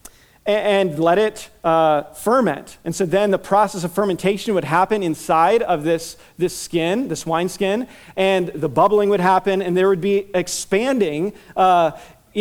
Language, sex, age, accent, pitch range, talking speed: English, male, 40-59, American, 165-215 Hz, 160 wpm